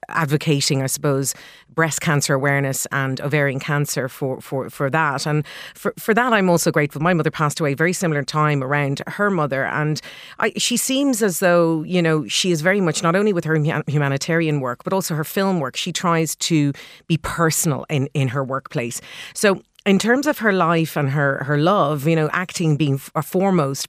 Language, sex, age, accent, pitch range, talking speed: English, female, 40-59, Irish, 140-175 Hz, 195 wpm